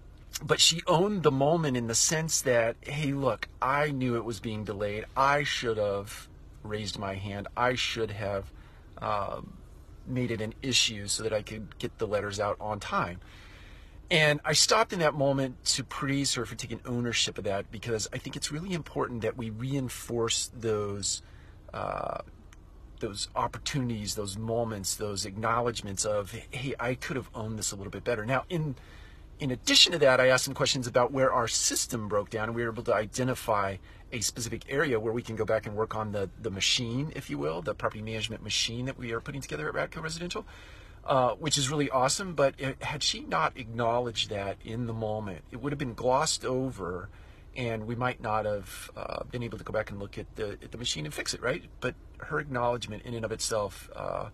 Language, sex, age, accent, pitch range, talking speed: English, male, 40-59, American, 105-130 Hz, 205 wpm